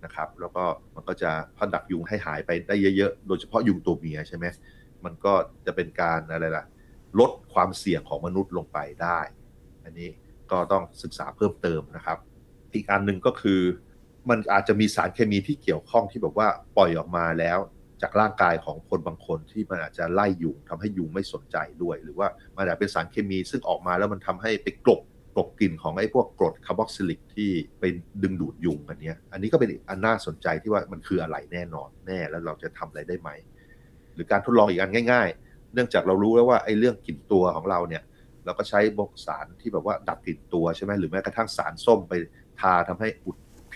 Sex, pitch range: male, 85-105 Hz